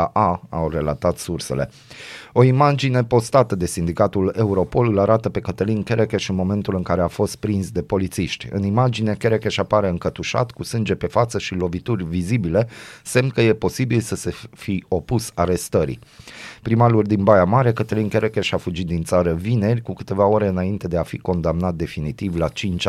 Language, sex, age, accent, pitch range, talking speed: Romanian, male, 30-49, native, 90-115 Hz, 175 wpm